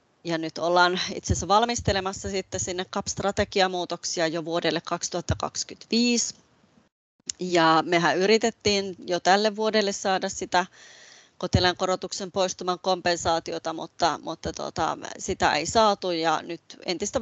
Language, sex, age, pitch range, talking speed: Finnish, female, 30-49, 165-200 Hz, 115 wpm